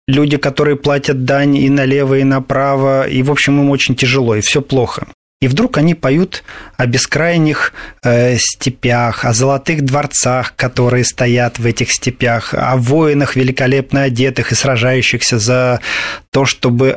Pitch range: 130-150 Hz